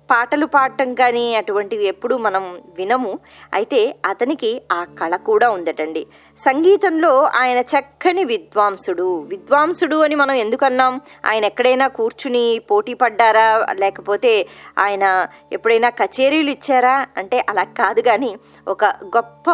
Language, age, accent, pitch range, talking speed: Telugu, 20-39, native, 210-300 Hz, 115 wpm